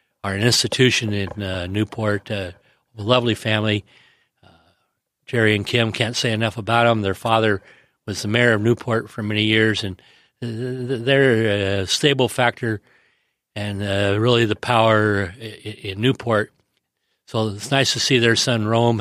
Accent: American